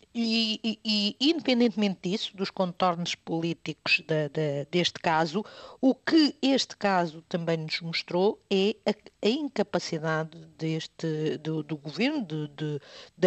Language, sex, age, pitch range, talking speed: Portuguese, female, 50-69, 160-215 Hz, 135 wpm